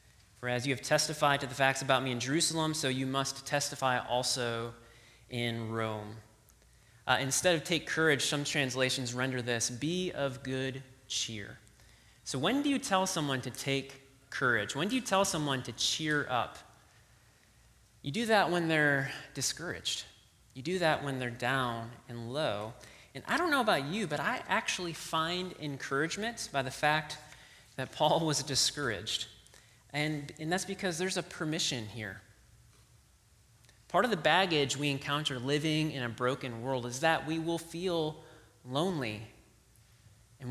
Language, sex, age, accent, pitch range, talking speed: English, male, 30-49, American, 120-160 Hz, 160 wpm